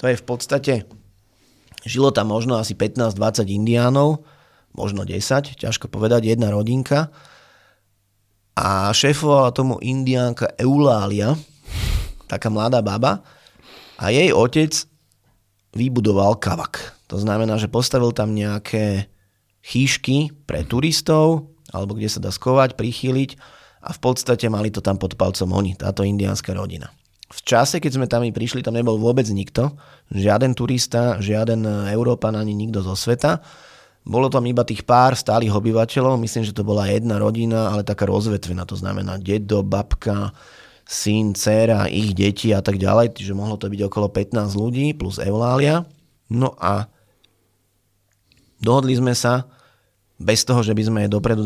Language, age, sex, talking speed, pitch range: Slovak, 30-49, male, 140 wpm, 100-125 Hz